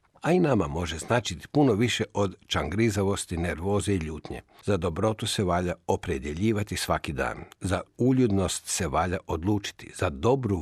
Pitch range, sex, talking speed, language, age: 90-110 Hz, male, 145 wpm, Croatian, 60-79